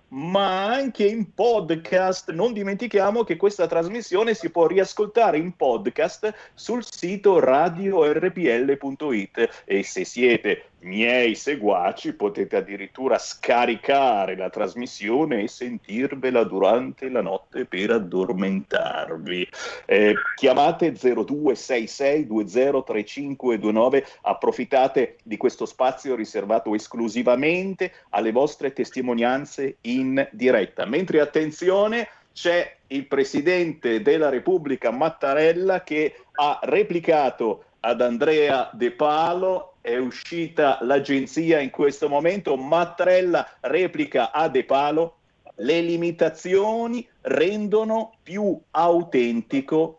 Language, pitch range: Italian, 140-220 Hz